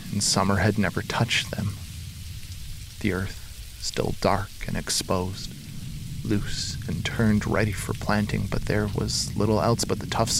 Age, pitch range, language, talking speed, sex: 30-49, 100-115 Hz, English, 150 wpm, male